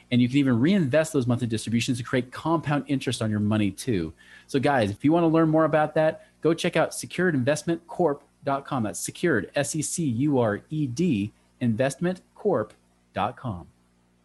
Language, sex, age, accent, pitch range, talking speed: English, male, 30-49, American, 110-160 Hz, 145 wpm